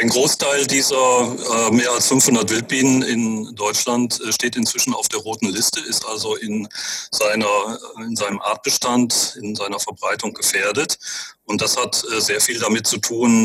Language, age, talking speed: German, 40-59, 160 wpm